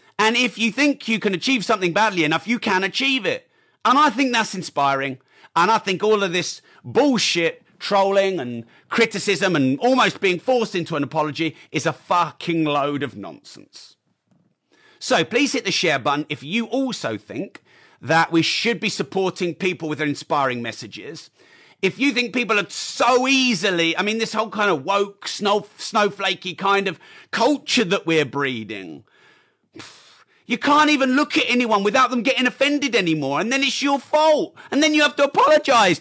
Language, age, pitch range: English, 40-59, 160-250 Hz